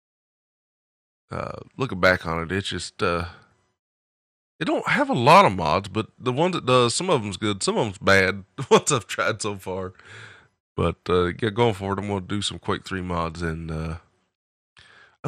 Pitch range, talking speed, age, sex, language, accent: 85-105 Hz, 195 wpm, 20-39, male, English, American